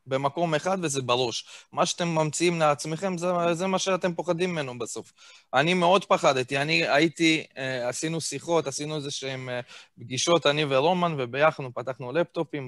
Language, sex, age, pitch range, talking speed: Hebrew, male, 20-39, 135-175 Hz, 155 wpm